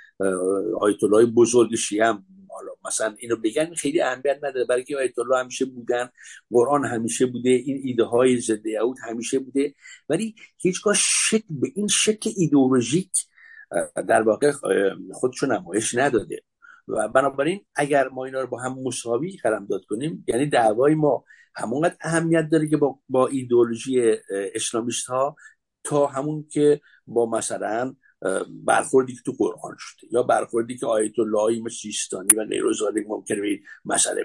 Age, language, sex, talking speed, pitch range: 60-79, English, male, 145 wpm, 120-180 Hz